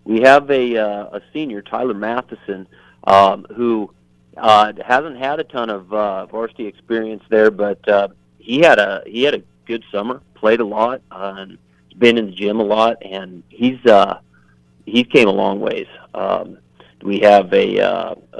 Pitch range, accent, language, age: 100-115 Hz, American, English, 40-59